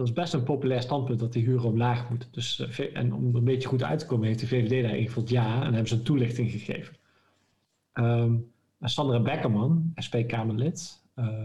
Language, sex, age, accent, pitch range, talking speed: Dutch, male, 50-69, Dutch, 120-145 Hz, 185 wpm